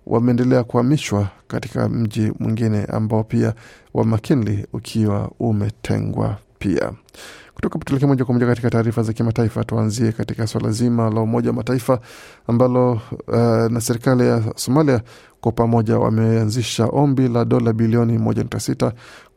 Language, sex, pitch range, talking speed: Swahili, male, 110-125 Hz, 125 wpm